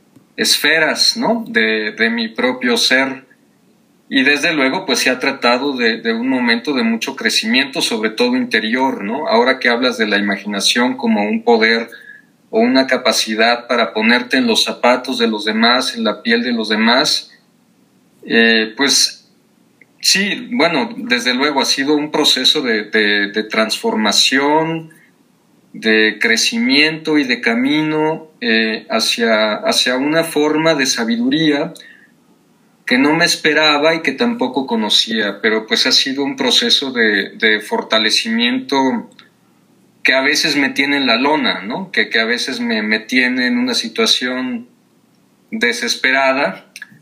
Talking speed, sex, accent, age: 145 wpm, male, Mexican, 40-59